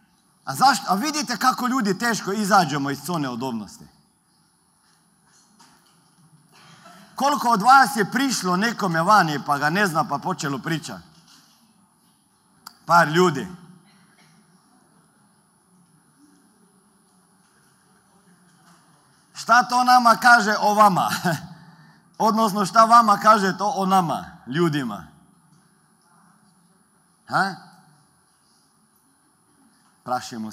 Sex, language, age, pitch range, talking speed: male, Croatian, 50-69, 155-210 Hz, 85 wpm